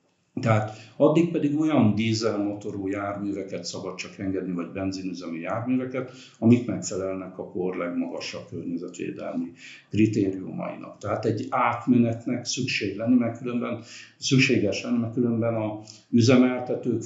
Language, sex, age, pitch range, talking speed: Hungarian, male, 50-69, 100-125 Hz, 110 wpm